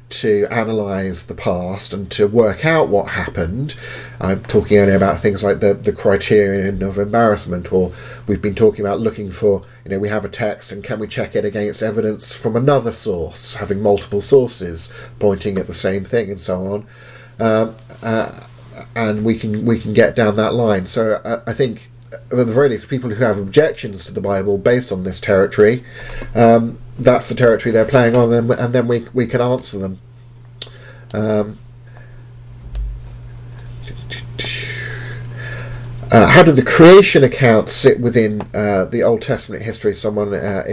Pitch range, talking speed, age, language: 105-125 Hz, 170 wpm, 40-59, English